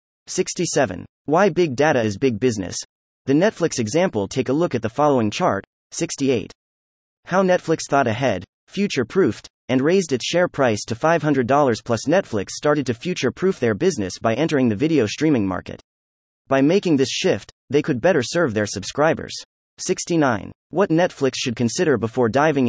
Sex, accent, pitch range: male, American, 110-155 Hz